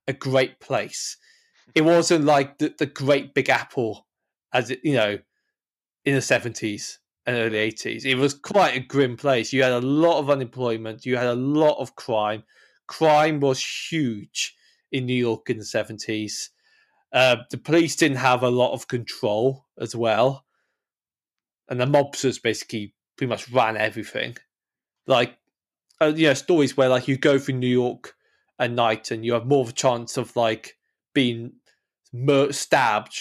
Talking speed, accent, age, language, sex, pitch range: 170 wpm, British, 20-39, English, male, 125-145 Hz